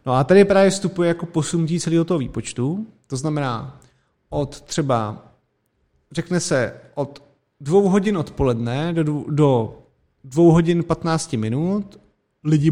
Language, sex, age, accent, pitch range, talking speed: Czech, male, 30-49, native, 130-165 Hz, 130 wpm